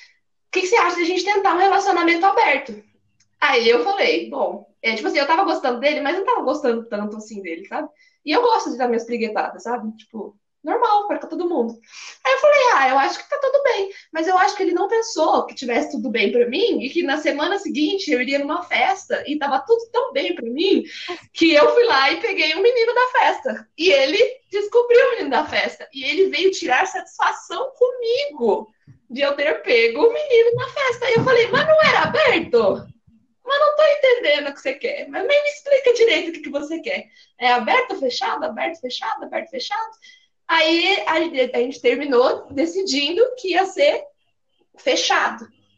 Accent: Brazilian